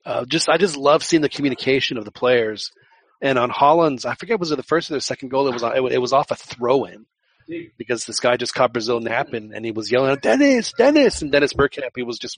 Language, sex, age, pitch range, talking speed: English, male, 40-59, 115-140 Hz, 245 wpm